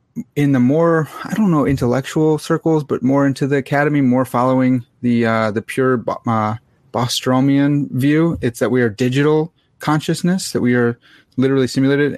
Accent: American